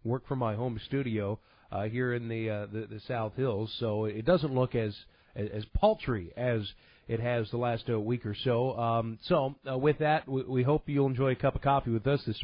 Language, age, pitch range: English, 40-59, 120-145 Hz